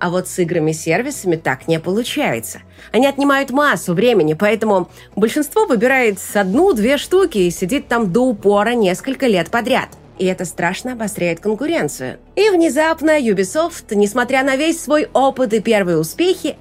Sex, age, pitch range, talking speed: female, 30-49, 190-275 Hz, 145 wpm